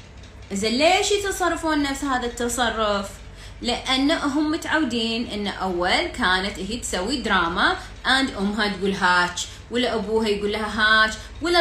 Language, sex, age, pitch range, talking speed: Arabic, female, 20-39, 215-270 Hz, 120 wpm